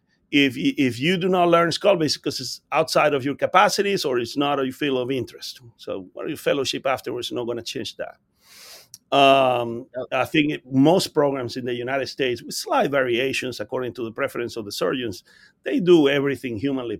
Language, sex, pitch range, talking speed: English, male, 125-150 Hz, 200 wpm